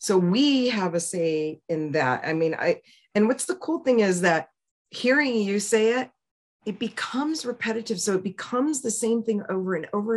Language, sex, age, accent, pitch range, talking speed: English, female, 40-59, American, 175-230 Hz, 195 wpm